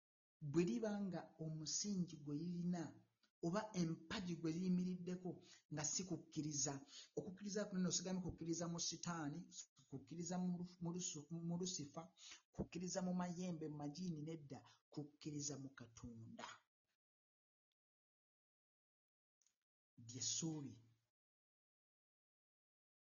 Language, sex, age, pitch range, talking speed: English, male, 60-79, 150-185 Hz, 70 wpm